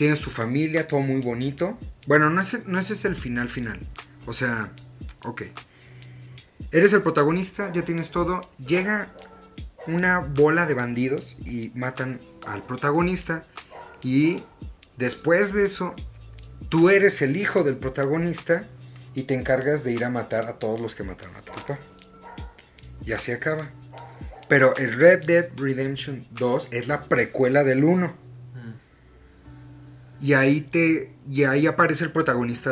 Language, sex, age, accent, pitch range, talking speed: Spanish, male, 40-59, Mexican, 120-165 Hz, 145 wpm